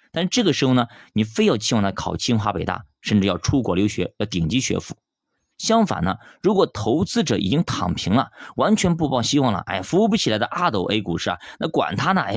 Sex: male